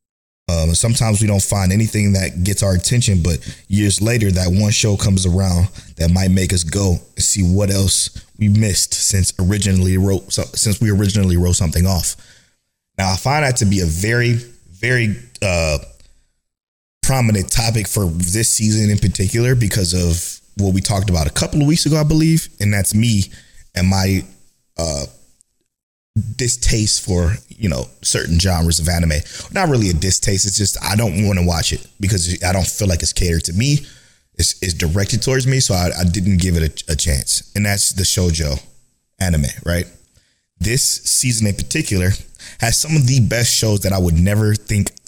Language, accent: English, American